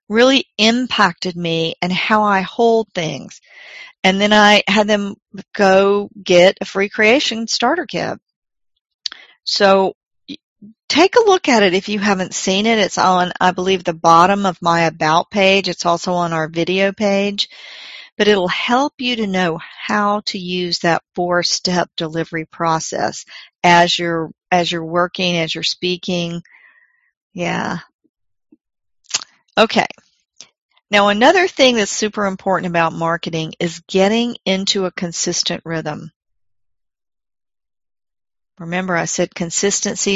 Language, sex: English, female